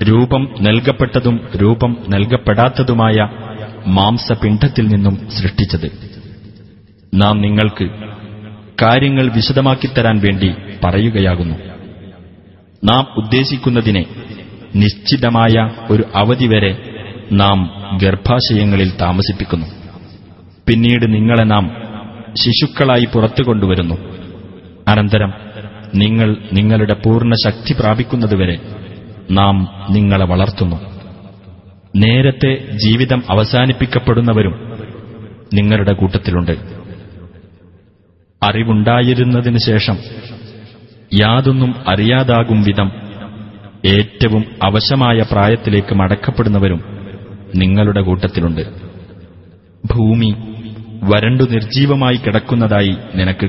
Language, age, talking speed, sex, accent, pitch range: Malayalam, 30-49, 65 wpm, male, native, 95-115 Hz